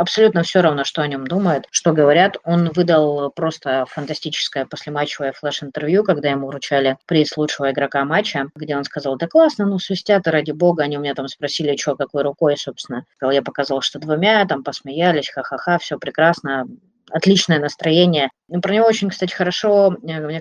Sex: female